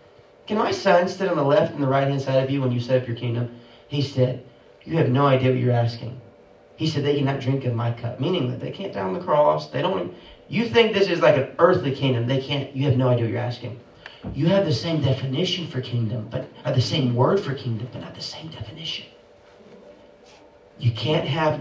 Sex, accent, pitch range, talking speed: male, American, 120-150 Hz, 240 wpm